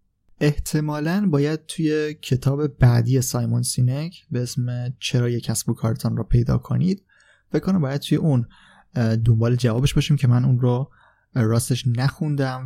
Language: Persian